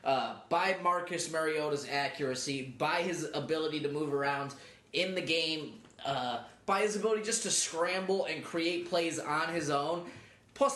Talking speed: 155 wpm